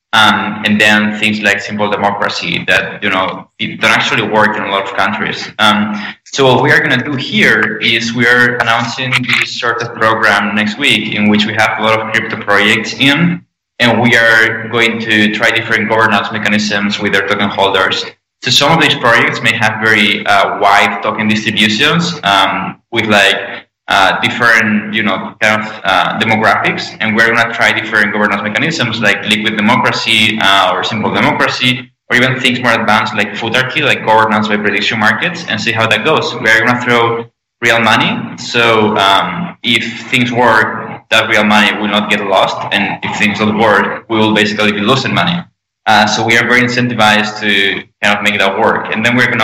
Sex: male